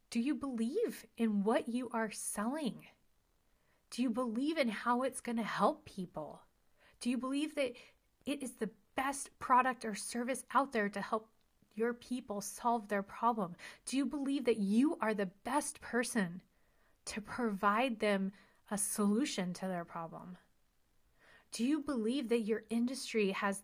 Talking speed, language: 155 wpm, English